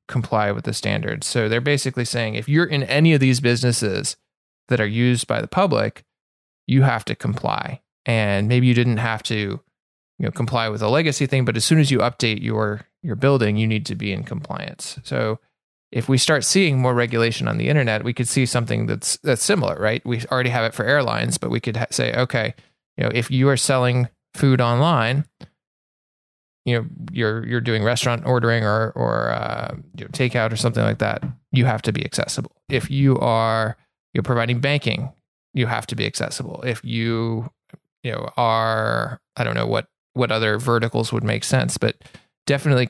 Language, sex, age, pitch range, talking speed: English, male, 20-39, 115-135 Hz, 195 wpm